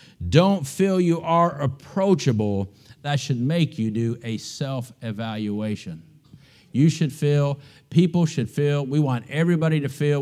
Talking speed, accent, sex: 135 wpm, American, male